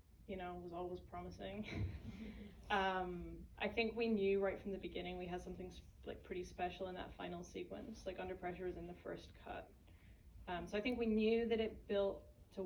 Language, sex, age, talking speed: English, female, 10-29, 205 wpm